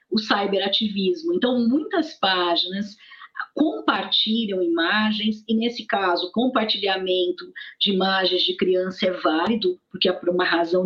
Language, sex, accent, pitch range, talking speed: Portuguese, female, Brazilian, 180-240 Hz, 120 wpm